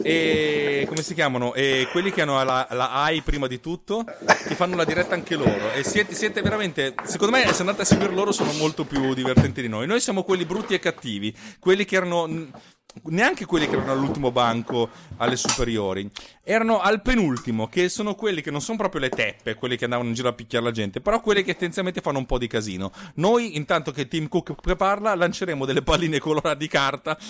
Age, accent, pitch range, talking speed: 30-49, native, 125-185 Hz, 210 wpm